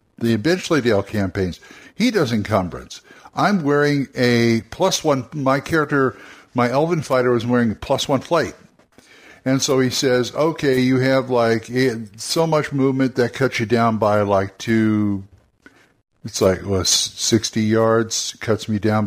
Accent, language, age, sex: American, English, 60-79, male